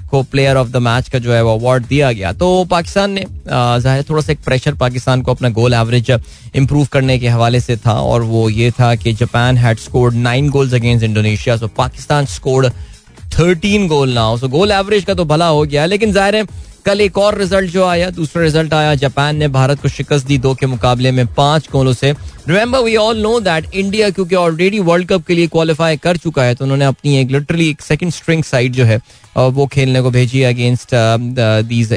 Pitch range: 125-160 Hz